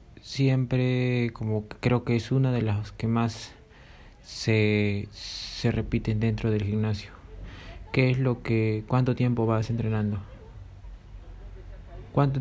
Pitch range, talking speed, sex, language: 105-120 Hz, 120 wpm, male, Spanish